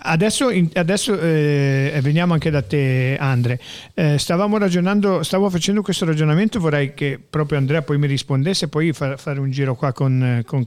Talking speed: 150 wpm